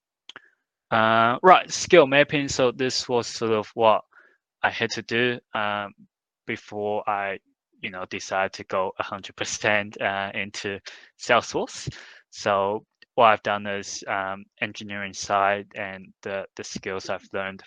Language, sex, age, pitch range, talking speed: English, male, 20-39, 100-110 Hz, 135 wpm